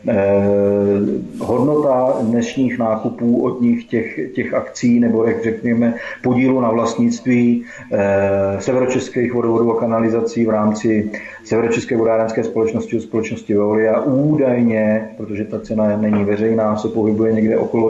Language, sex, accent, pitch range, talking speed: Czech, male, native, 110-120 Hz, 125 wpm